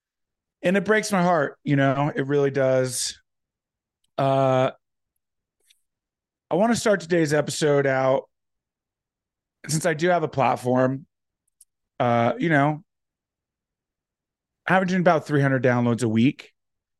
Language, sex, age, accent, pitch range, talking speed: English, male, 30-49, American, 120-155 Hz, 125 wpm